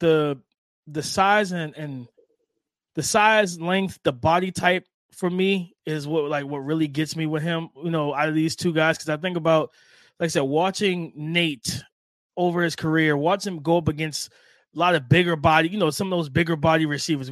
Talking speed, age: 205 wpm, 20-39